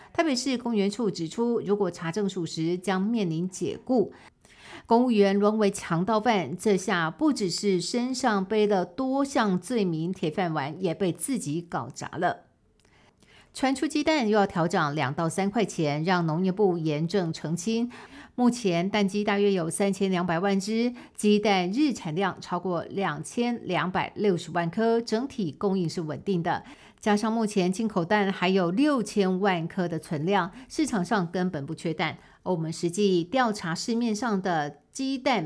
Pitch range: 170-215 Hz